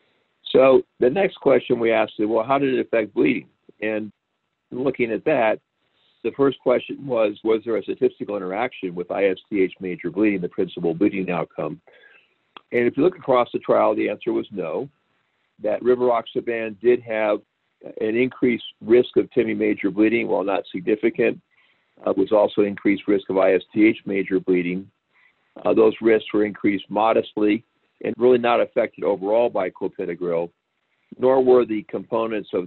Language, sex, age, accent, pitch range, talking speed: English, male, 50-69, American, 95-130 Hz, 160 wpm